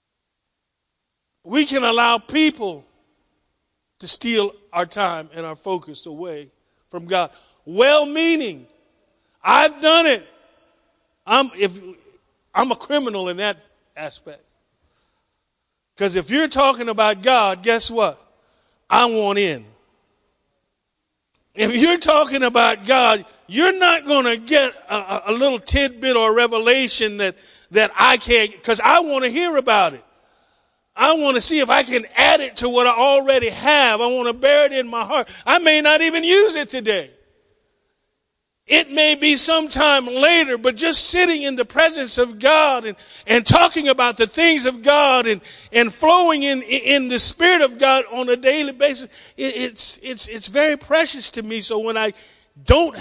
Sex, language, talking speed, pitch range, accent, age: male, English, 155 wpm, 215-295 Hz, American, 50-69